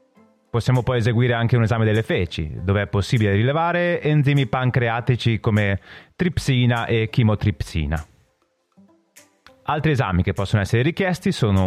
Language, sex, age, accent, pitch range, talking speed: Italian, male, 30-49, native, 105-160 Hz, 130 wpm